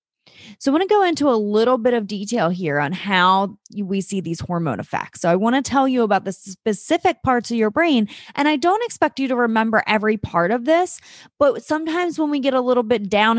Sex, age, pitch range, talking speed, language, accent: female, 20-39, 195-265 Hz, 235 wpm, English, American